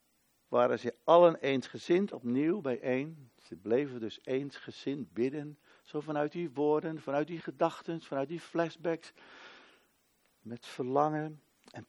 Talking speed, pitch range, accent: 120 wpm, 130-180 Hz, Dutch